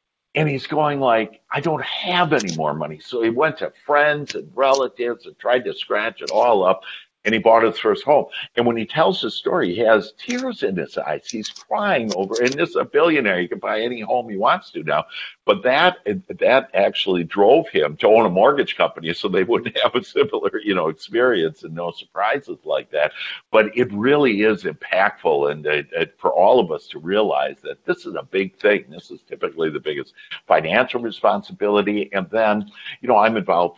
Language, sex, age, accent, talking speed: English, male, 60-79, American, 210 wpm